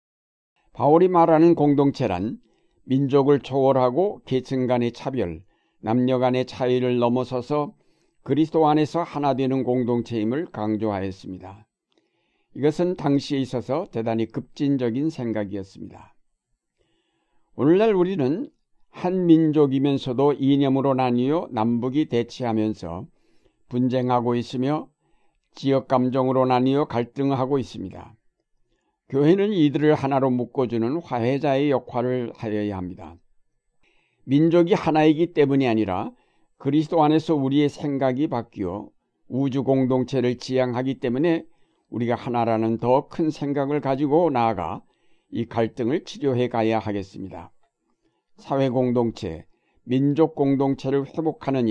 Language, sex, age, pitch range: Korean, male, 60-79, 120-145 Hz